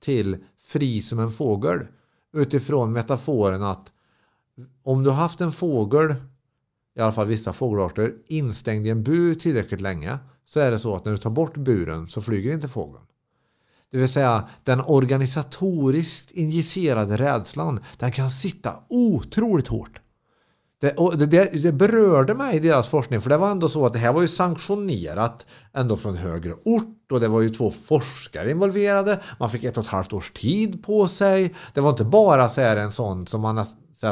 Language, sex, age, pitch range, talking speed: English, male, 50-69, 110-165 Hz, 180 wpm